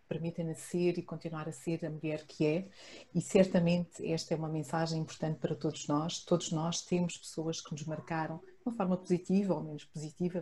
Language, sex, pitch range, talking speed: Portuguese, female, 155-180 Hz, 195 wpm